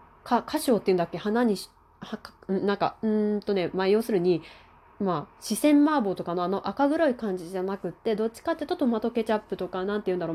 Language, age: Japanese, 20-39